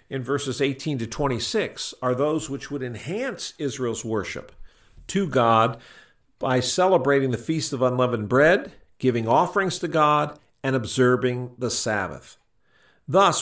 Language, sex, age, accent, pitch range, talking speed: English, male, 50-69, American, 115-170 Hz, 135 wpm